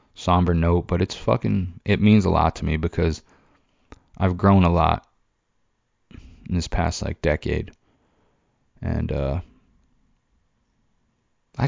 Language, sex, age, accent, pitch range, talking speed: English, male, 20-39, American, 85-100 Hz, 125 wpm